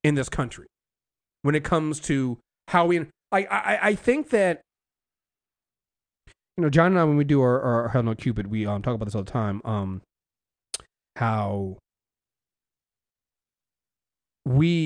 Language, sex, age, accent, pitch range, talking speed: English, male, 30-49, American, 125-185 Hz, 150 wpm